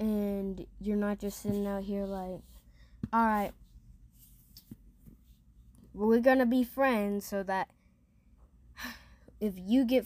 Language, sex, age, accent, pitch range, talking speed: English, female, 10-29, American, 175-220 Hz, 105 wpm